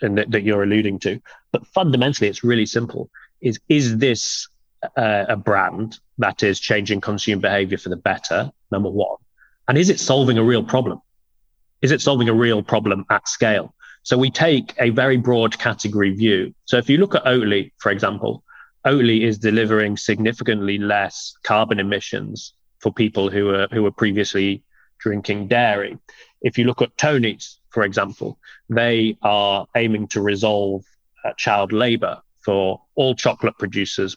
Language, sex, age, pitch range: English, male, 30-49, 100-120 Hz